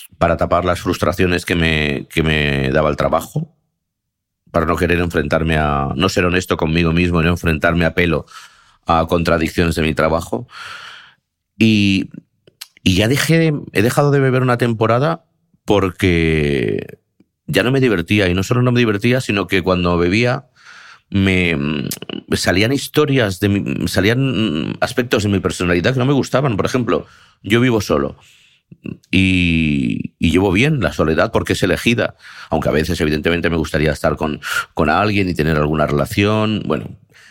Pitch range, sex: 85-115 Hz, male